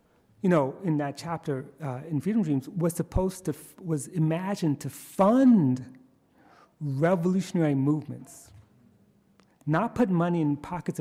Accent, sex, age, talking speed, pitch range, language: American, male, 40-59, 125 wpm, 135-180 Hz, English